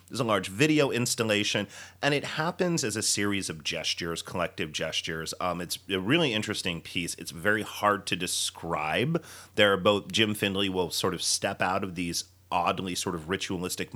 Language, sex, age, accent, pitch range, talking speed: English, male, 30-49, American, 90-125 Hz, 175 wpm